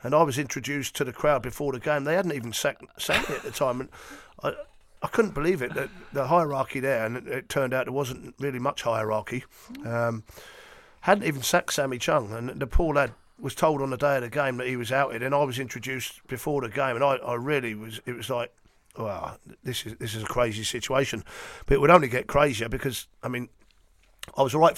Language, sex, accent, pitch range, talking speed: English, male, British, 120-145 Hz, 230 wpm